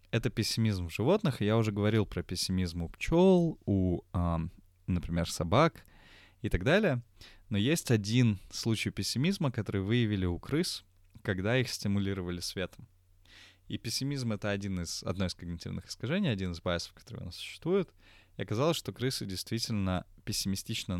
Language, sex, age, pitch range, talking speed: Russian, male, 20-39, 90-110 Hz, 140 wpm